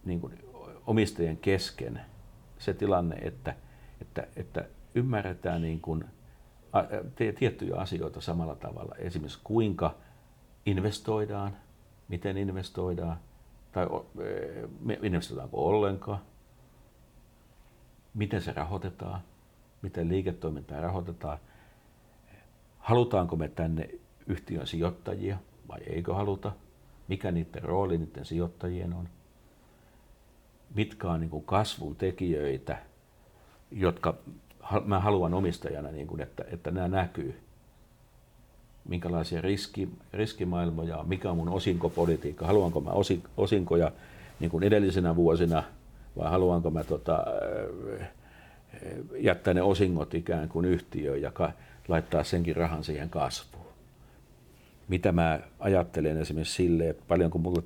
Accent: native